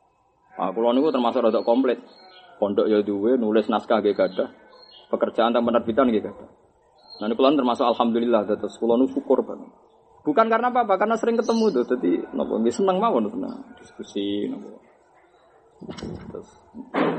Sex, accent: male, native